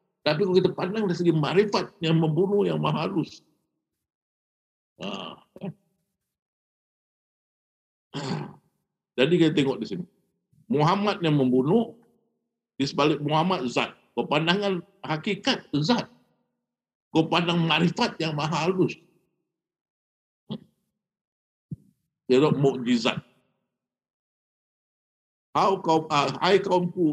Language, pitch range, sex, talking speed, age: Indonesian, 135-190 Hz, male, 85 wpm, 50-69